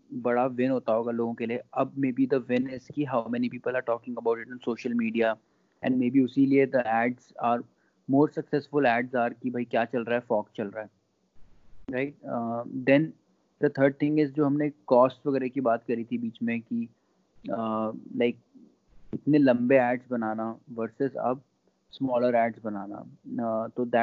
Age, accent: 20-39, native